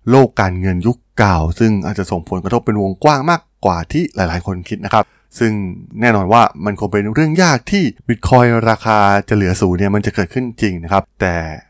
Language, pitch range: Thai, 95-125 Hz